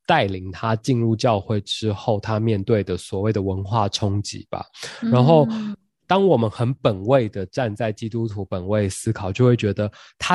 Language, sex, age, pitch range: Chinese, male, 20-39, 105-130 Hz